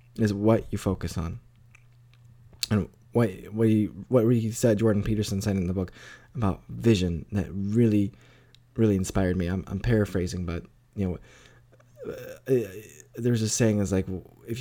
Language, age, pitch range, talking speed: English, 20-39, 100-120 Hz, 165 wpm